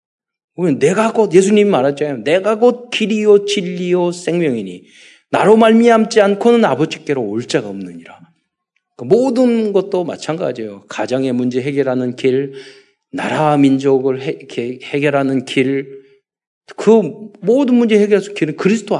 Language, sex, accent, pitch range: Korean, male, native, 135-200 Hz